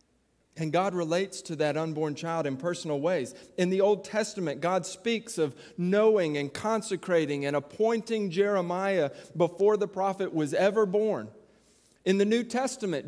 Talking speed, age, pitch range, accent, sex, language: 150 wpm, 40-59, 175-215 Hz, American, male, English